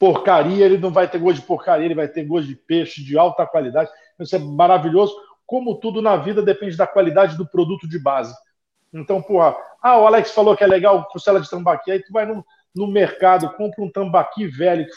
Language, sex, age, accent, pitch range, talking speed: Portuguese, male, 50-69, Brazilian, 170-210 Hz, 220 wpm